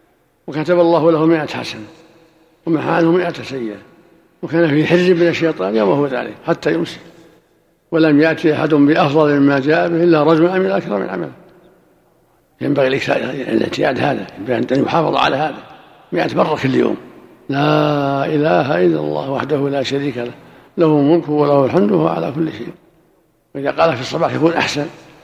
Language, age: Arabic, 60-79